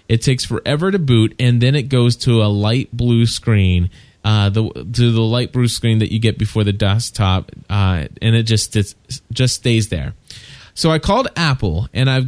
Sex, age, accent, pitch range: male, 20-39, American, 110-135 Hz